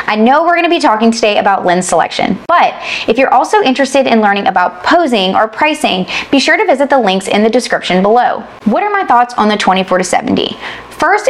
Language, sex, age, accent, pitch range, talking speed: English, female, 20-39, American, 210-275 Hz, 215 wpm